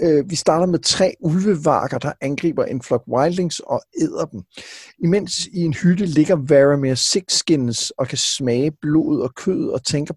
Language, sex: Danish, male